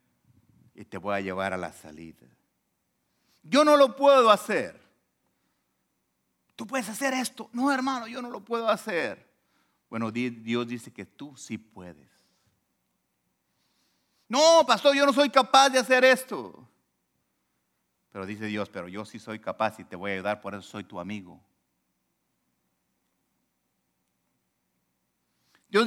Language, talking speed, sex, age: Spanish, 135 wpm, male, 50-69